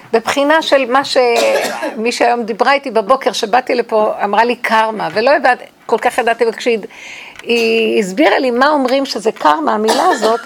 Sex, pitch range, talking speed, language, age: female, 230-285 Hz, 155 wpm, Hebrew, 50-69